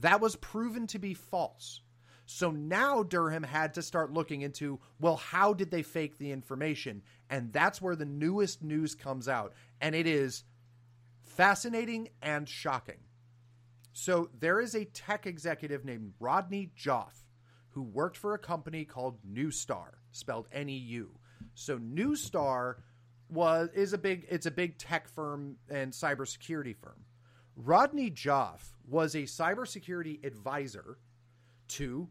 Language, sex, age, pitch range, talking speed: English, male, 30-49, 120-170 Hz, 140 wpm